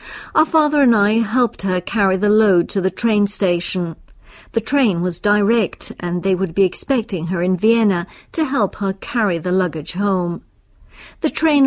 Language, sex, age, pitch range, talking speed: English, female, 60-79, 185-230 Hz, 175 wpm